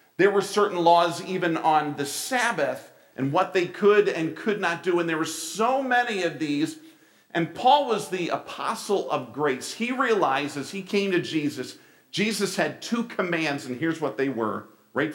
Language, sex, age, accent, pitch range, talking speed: English, male, 50-69, American, 130-185 Hz, 180 wpm